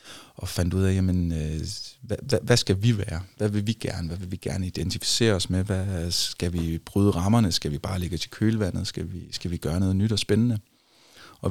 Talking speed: 225 wpm